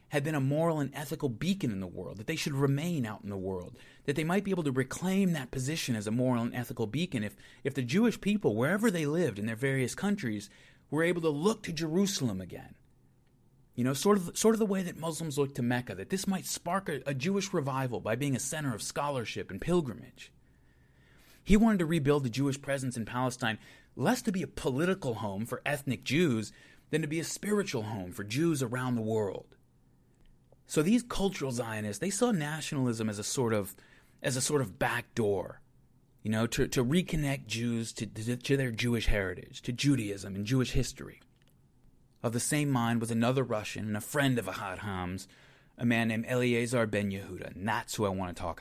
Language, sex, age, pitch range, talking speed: English, male, 30-49, 110-150 Hz, 205 wpm